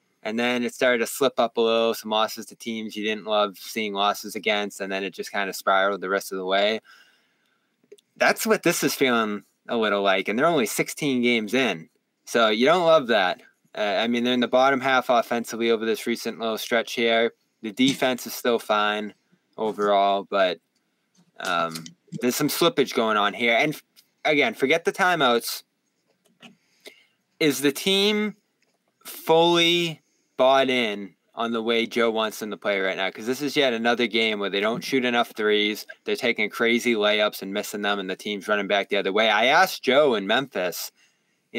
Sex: male